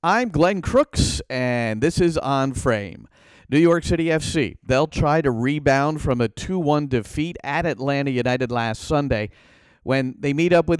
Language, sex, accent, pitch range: English, male, American, 135-180 Hz